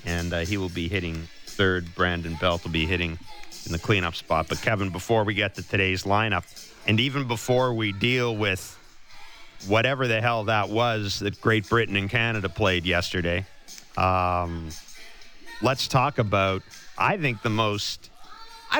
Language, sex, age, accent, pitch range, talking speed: English, male, 40-59, American, 105-145 Hz, 165 wpm